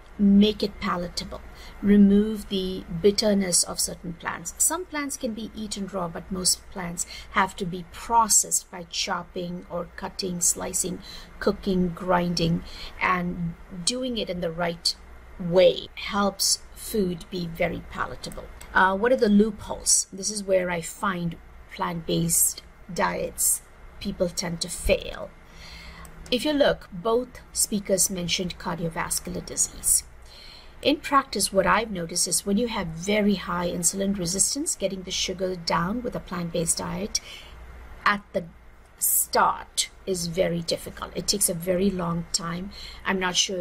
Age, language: 50-69, English